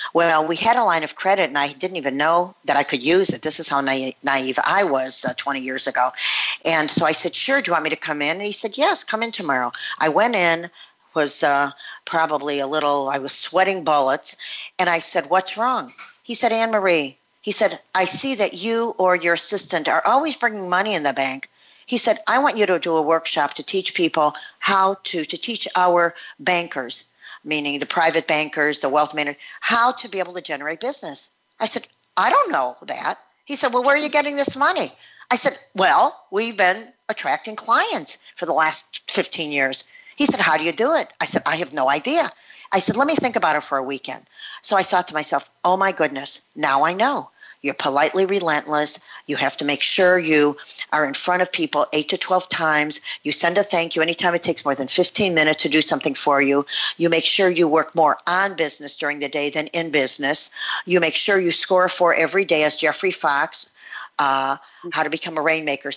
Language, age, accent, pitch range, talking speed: English, 50-69, American, 150-195 Hz, 220 wpm